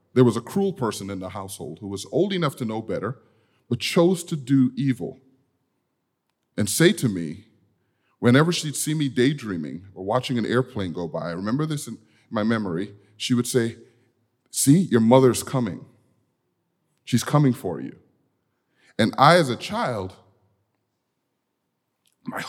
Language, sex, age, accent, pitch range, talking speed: English, male, 30-49, American, 105-135 Hz, 155 wpm